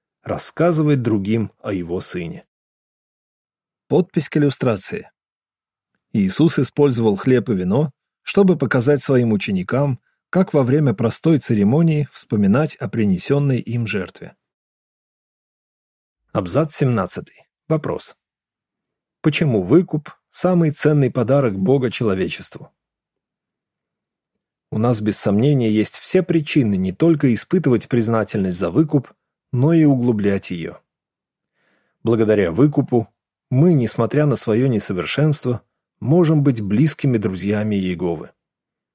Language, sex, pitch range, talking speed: Russian, male, 115-150 Hz, 100 wpm